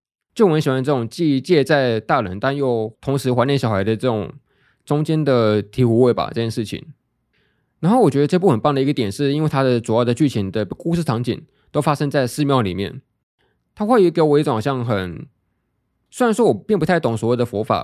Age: 20-39